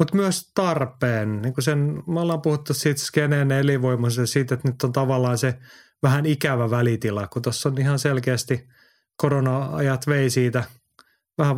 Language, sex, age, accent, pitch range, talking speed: Finnish, male, 30-49, native, 120-145 Hz, 155 wpm